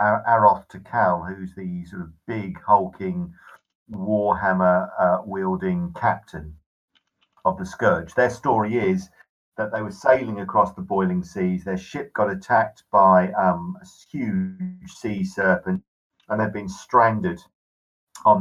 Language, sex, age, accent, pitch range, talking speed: English, male, 50-69, British, 90-140 Hz, 130 wpm